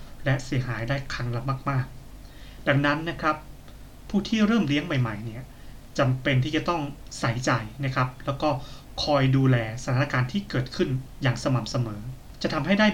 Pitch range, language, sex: 125-145 Hz, Thai, male